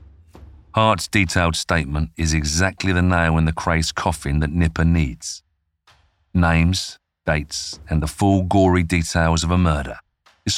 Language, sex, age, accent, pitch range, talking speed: English, male, 40-59, British, 80-90 Hz, 140 wpm